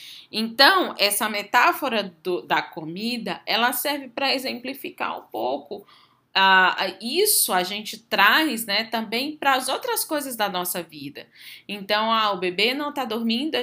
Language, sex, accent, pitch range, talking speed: Portuguese, female, Brazilian, 180-290 Hz, 145 wpm